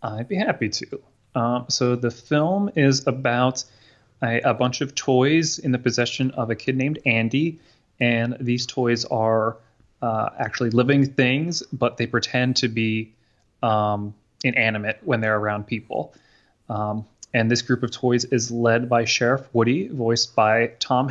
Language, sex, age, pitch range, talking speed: English, male, 20-39, 110-130 Hz, 160 wpm